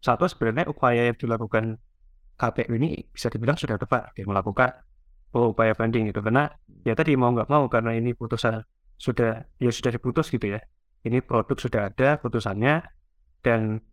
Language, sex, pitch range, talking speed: Indonesian, male, 100-140 Hz, 165 wpm